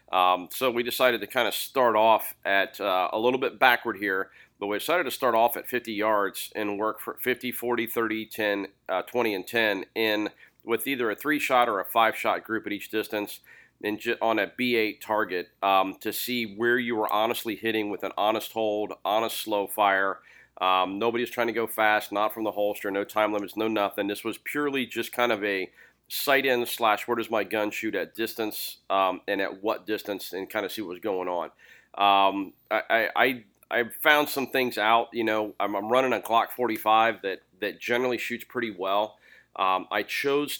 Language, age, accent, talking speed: English, 40-59, American, 205 wpm